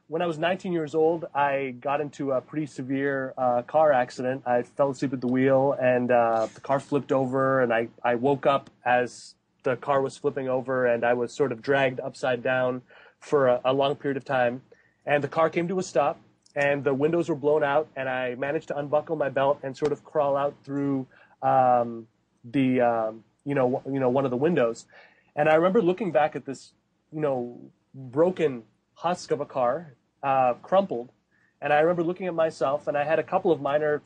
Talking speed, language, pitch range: 210 wpm, English, 130-155 Hz